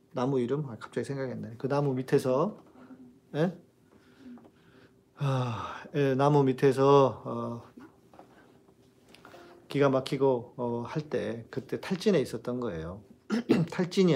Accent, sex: native, male